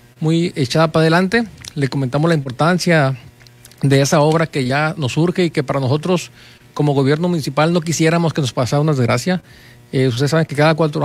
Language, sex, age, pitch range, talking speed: Spanish, male, 40-59, 140-170 Hz, 190 wpm